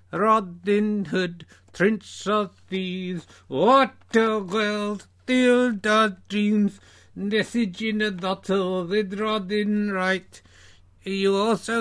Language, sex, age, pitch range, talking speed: English, male, 60-79, 195-240 Hz, 95 wpm